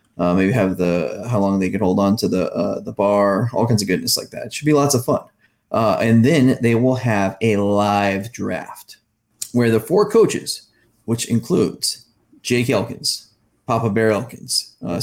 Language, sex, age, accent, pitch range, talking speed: English, male, 20-39, American, 100-115 Hz, 190 wpm